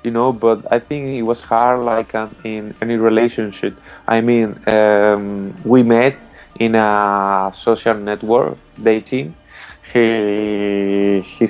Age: 20-39